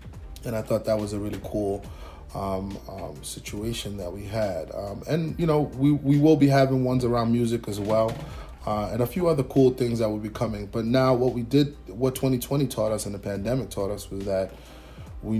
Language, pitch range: English, 95-115 Hz